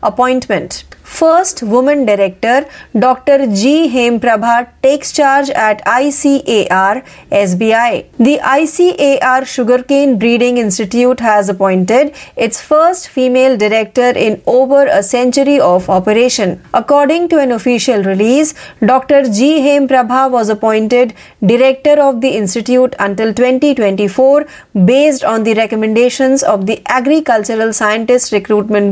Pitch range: 220-275 Hz